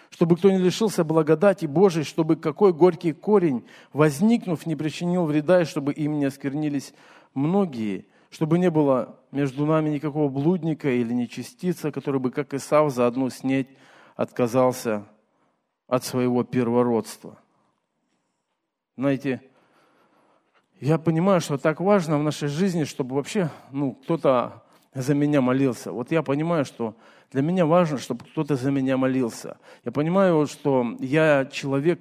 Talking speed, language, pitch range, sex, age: 140 wpm, Russian, 125-160 Hz, male, 40-59